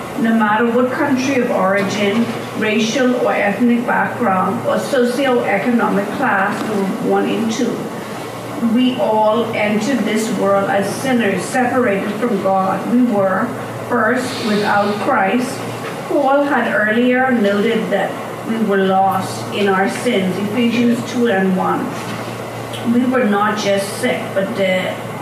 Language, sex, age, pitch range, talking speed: English, female, 50-69, 200-245 Hz, 130 wpm